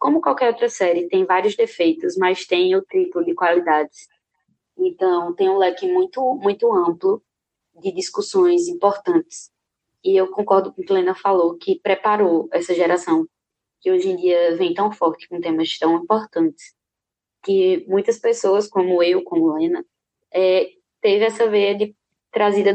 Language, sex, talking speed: Portuguese, female, 160 wpm